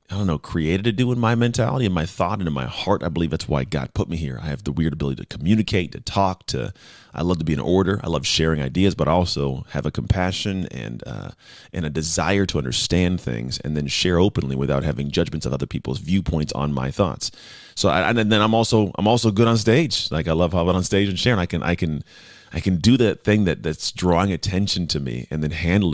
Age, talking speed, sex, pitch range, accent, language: 30-49, 250 wpm, male, 75-95 Hz, American, English